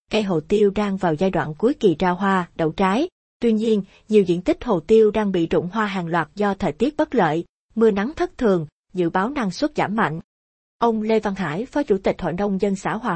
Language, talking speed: Vietnamese, 240 wpm